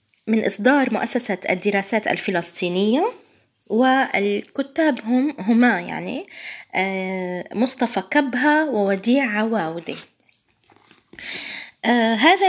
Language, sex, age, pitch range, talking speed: Arabic, female, 20-39, 210-295 Hz, 65 wpm